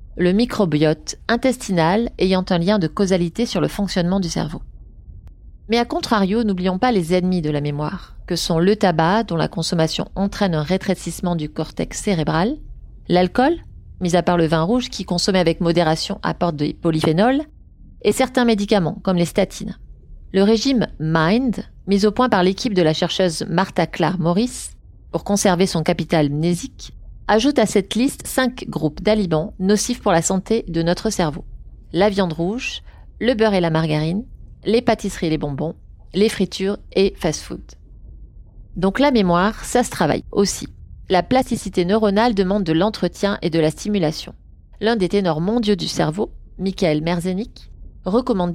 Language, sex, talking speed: French, female, 165 wpm